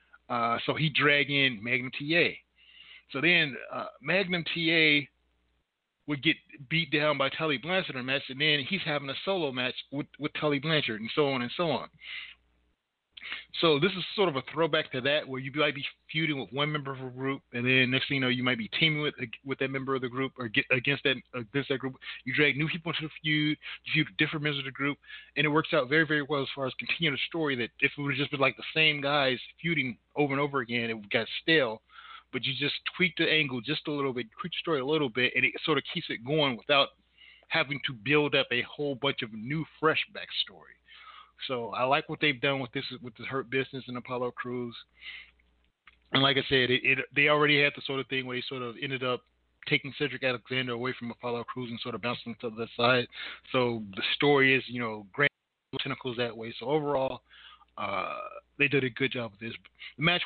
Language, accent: English, American